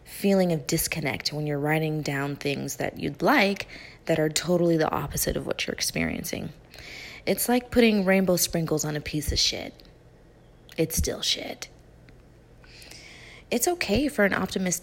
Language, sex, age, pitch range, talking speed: English, female, 20-39, 155-200 Hz, 155 wpm